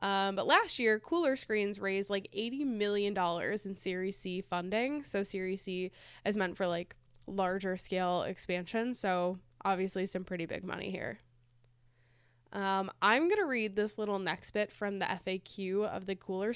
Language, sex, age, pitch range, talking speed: English, female, 10-29, 185-235 Hz, 165 wpm